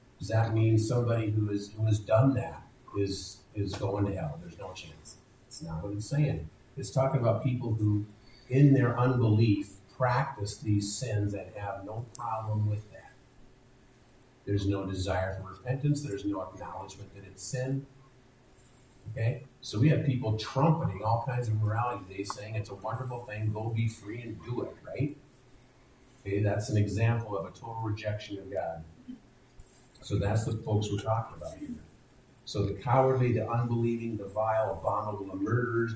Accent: American